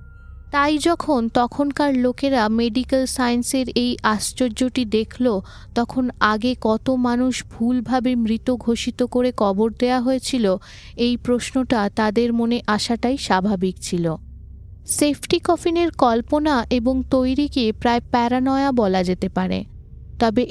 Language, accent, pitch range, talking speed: Bengali, native, 185-260 Hz, 110 wpm